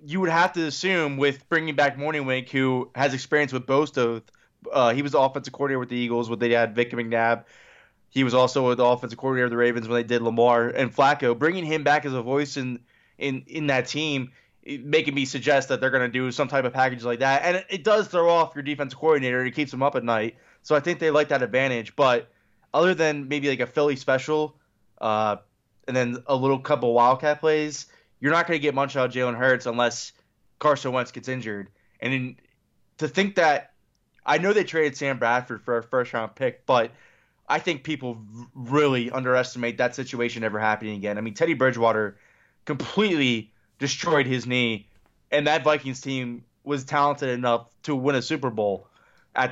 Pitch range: 120-145 Hz